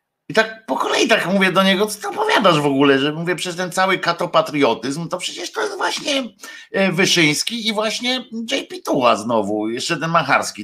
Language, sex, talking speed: Polish, male, 190 wpm